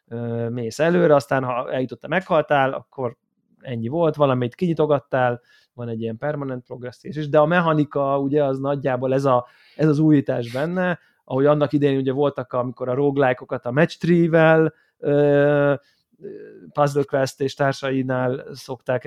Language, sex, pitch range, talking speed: Hungarian, male, 125-150 Hz, 150 wpm